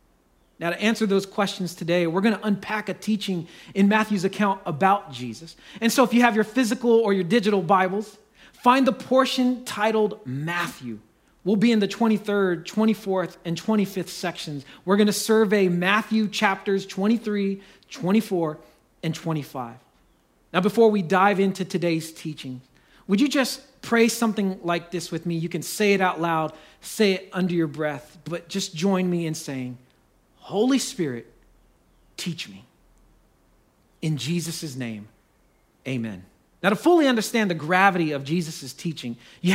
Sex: male